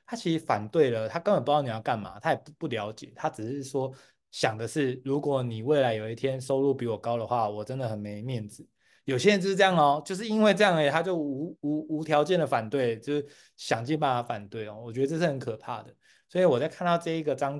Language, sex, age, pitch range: Chinese, male, 20-39, 120-150 Hz